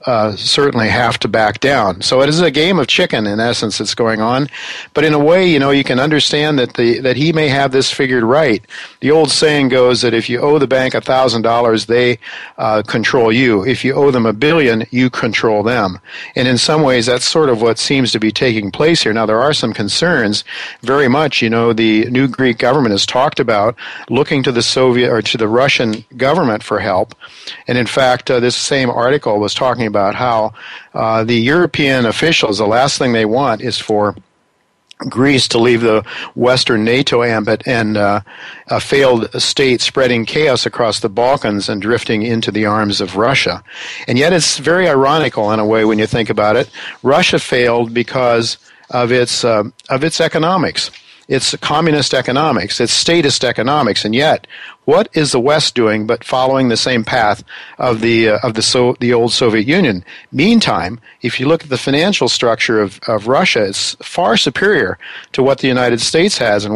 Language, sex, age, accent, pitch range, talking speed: English, male, 50-69, American, 110-135 Hz, 200 wpm